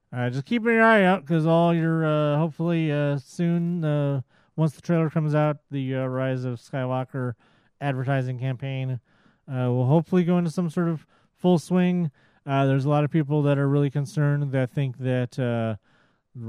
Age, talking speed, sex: 30-49, 180 wpm, male